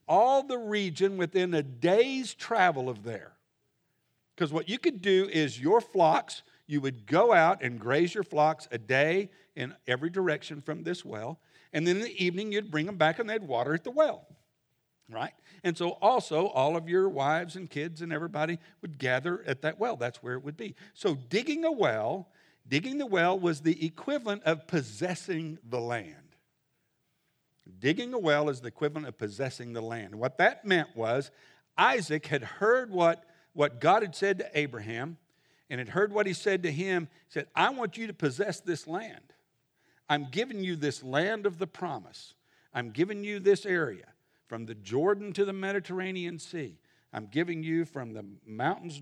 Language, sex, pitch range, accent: English, male, 140-190 Hz, American